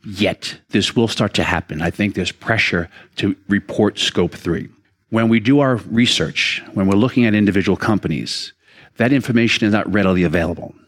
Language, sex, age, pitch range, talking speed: English, male, 50-69, 100-135 Hz, 170 wpm